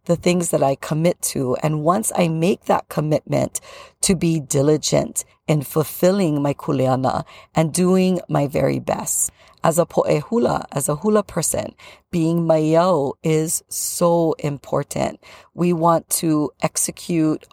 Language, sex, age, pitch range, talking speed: English, female, 40-59, 150-175 Hz, 140 wpm